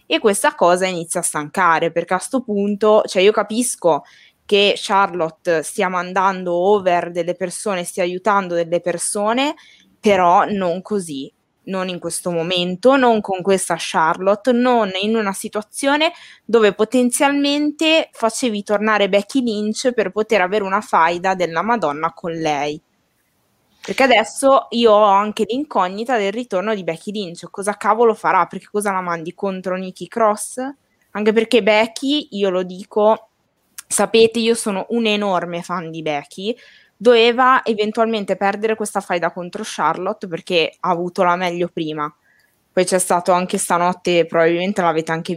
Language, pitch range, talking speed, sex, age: Italian, 175-220 Hz, 145 wpm, female, 20-39